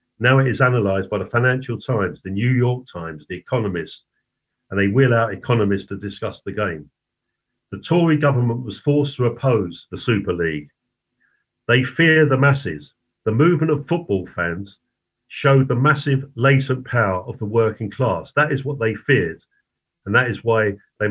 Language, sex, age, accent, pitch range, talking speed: English, male, 50-69, British, 105-135 Hz, 175 wpm